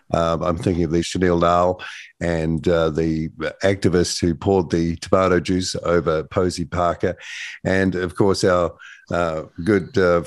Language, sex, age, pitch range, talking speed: English, male, 50-69, 85-100 Hz, 150 wpm